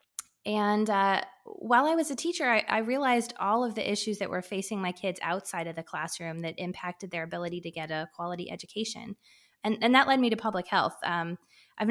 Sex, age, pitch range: female, 20-39, 175-215 Hz